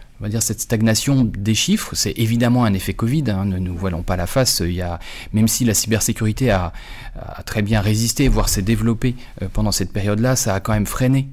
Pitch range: 105-130 Hz